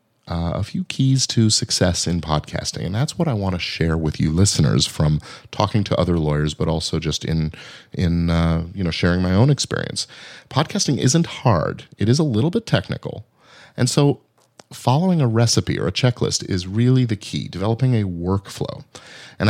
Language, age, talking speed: English, 40-59, 185 wpm